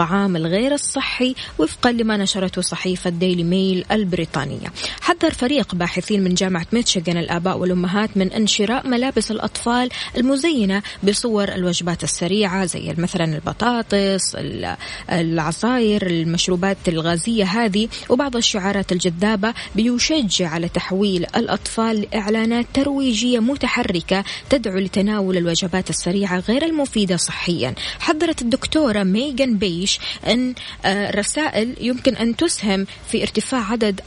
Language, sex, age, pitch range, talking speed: Arabic, female, 20-39, 180-235 Hz, 110 wpm